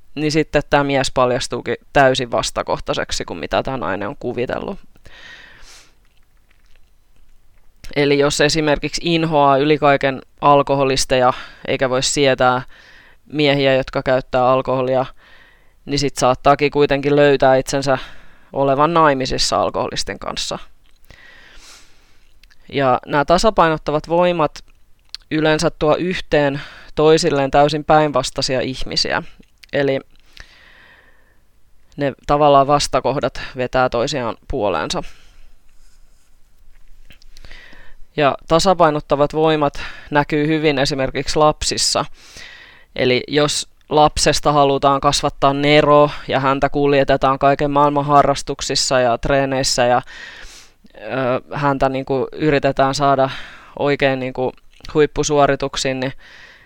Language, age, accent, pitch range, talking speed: Finnish, 20-39, native, 130-145 Hz, 85 wpm